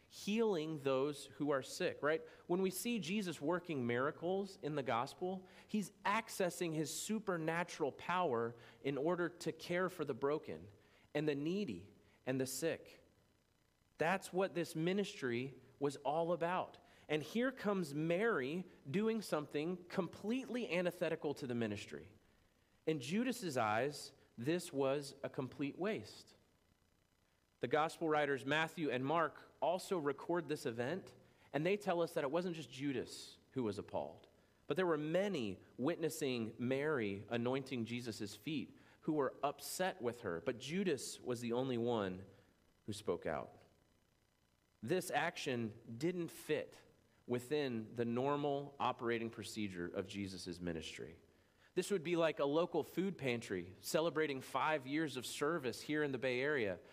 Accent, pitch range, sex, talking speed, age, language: American, 115-175 Hz, male, 140 wpm, 40-59, English